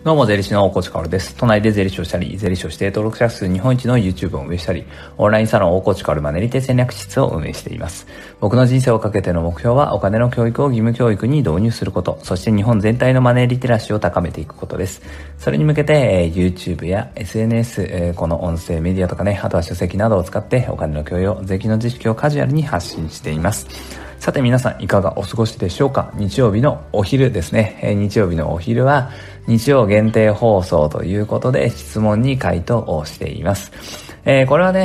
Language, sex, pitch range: Japanese, male, 90-120 Hz